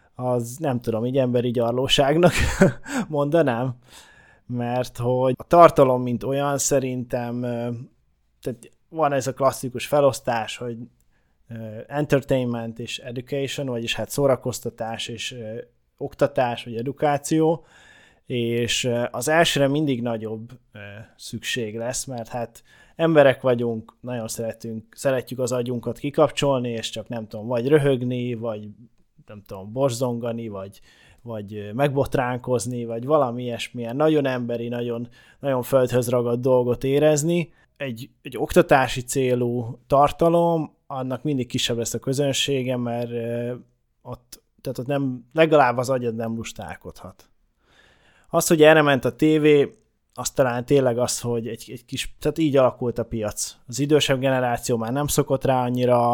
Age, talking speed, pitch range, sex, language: 20-39, 130 wpm, 120-140 Hz, male, Hungarian